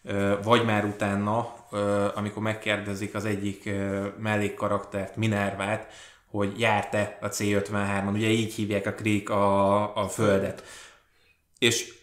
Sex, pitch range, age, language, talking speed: male, 105-135 Hz, 20-39, Hungarian, 115 wpm